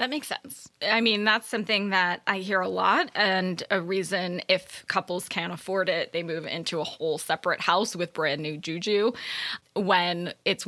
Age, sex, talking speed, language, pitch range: 10-29, female, 185 wpm, English, 185-220 Hz